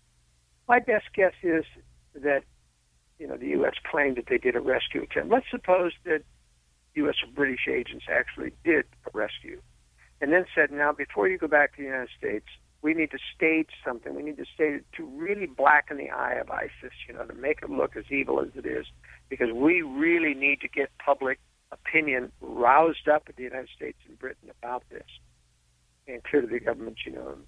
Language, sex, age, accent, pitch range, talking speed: English, male, 60-79, American, 120-180 Hz, 195 wpm